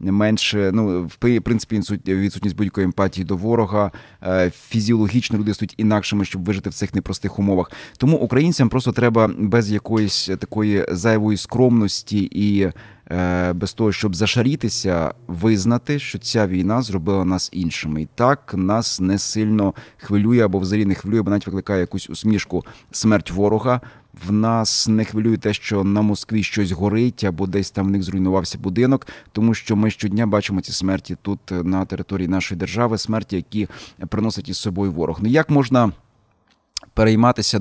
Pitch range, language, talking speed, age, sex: 95-110 Hz, Ukrainian, 155 wpm, 30-49, male